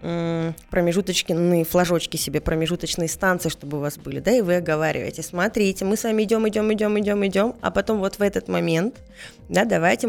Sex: female